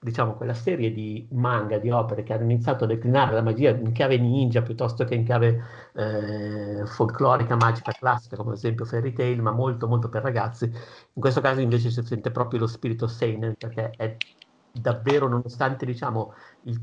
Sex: male